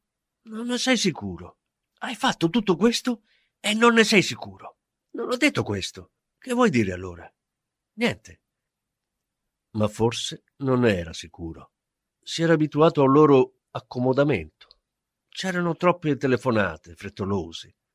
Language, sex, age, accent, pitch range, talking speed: Italian, male, 50-69, native, 105-170 Hz, 125 wpm